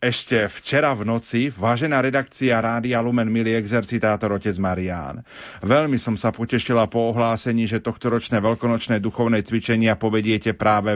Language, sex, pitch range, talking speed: Slovak, male, 110-125 Hz, 135 wpm